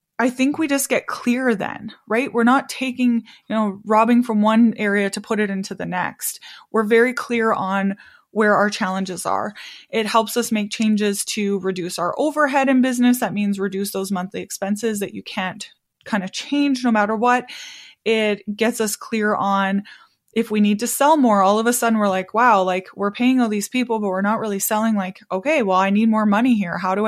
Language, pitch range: English, 200-245 Hz